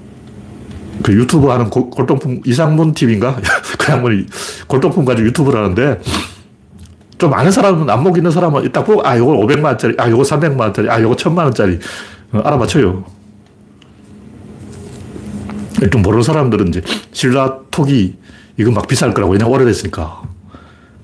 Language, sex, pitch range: Korean, male, 100-145 Hz